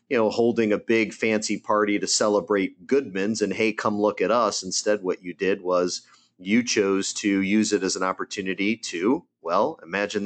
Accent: American